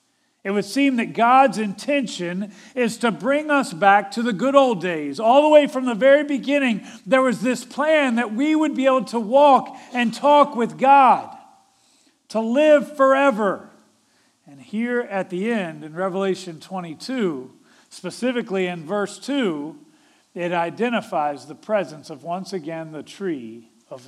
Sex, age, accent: male, 50-69, American